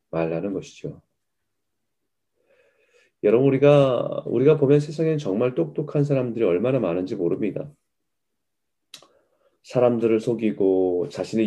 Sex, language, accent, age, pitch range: male, Korean, native, 30-49, 105-150 Hz